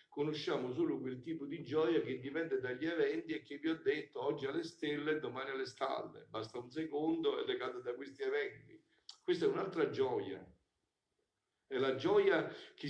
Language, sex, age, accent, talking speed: Italian, male, 50-69, native, 180 wpm